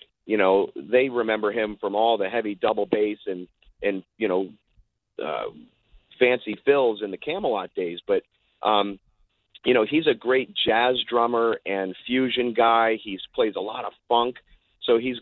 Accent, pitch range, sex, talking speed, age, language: American, 110-130 Hz, male, 165 wpm, 40-59, English